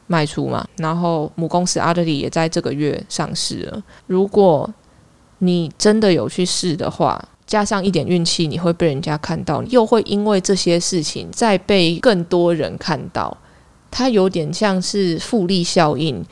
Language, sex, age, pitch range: Chinese, female, 20-39, 165-195 Hz